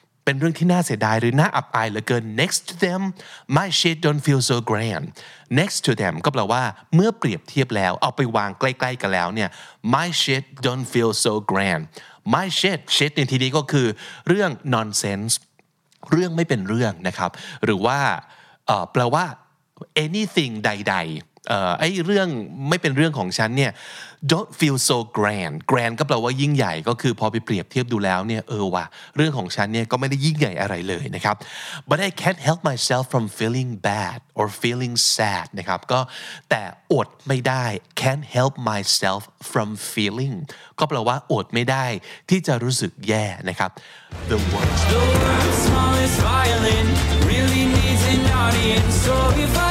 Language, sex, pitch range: Thai, male, 105-150 Hz